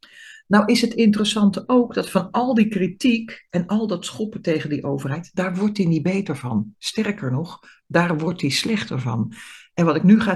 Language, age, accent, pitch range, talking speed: Dutch, 60-79, Dutch, 150-200 Hz, 205 wpm